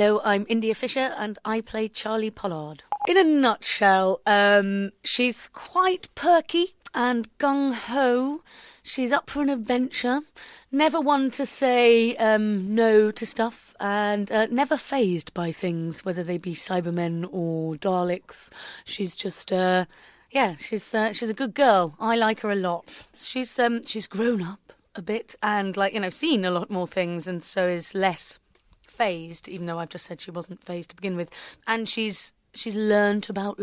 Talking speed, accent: 170 wpm, British